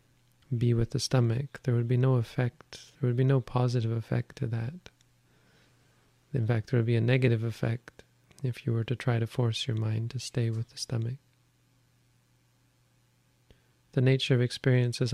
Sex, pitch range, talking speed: male, 120-130 Hz, 175 wpm